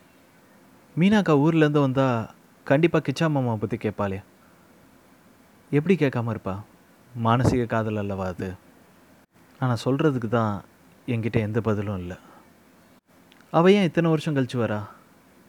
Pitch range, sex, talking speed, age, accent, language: 105-130 Hz, male, 105 wpm, 30-49, native, Tamil